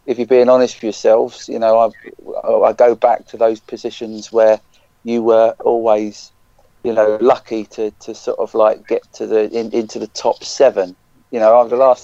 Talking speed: 200 wpm